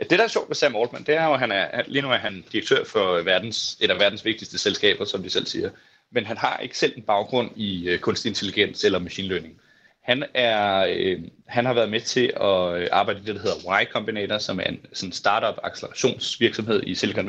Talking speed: 220 wpm